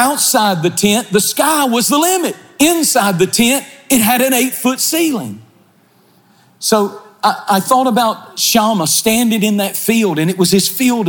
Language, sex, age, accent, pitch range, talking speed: English, male, 40-59, American, 145-195 Hz, 170 wpm